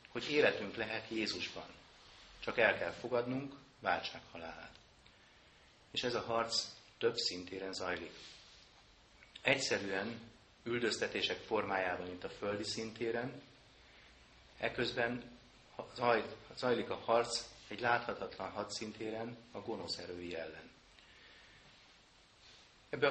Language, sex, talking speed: Hungarian, male, 90 wpm